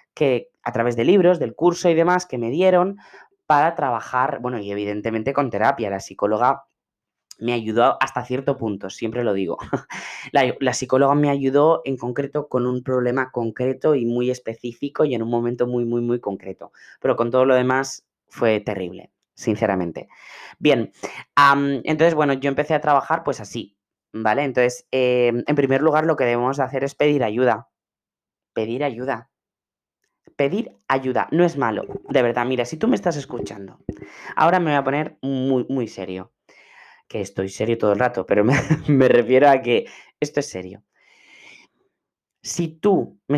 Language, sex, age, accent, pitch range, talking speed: Spanish, female, 20-39, Spanish, 115-140 Hz, 170 wpm